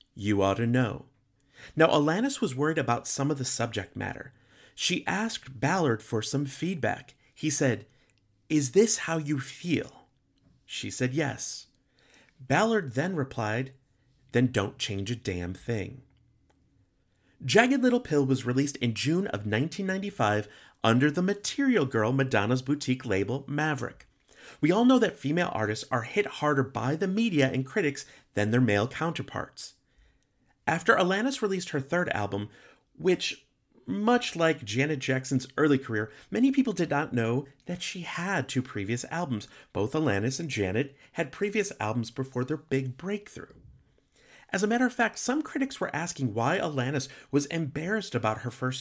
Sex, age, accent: male, 30-49, American